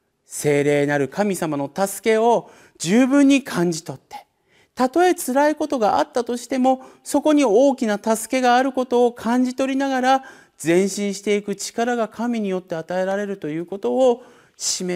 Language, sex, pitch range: Japanese, male, 155-250 Hz